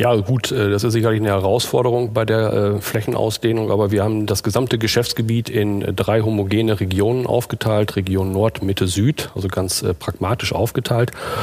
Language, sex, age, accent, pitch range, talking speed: German, male, 40-59, German, 100-120 Hz, 165 wpm